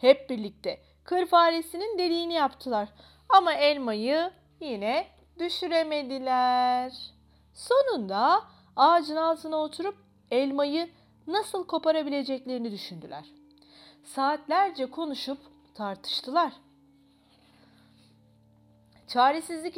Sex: female